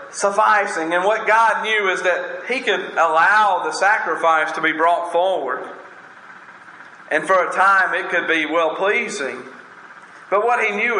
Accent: American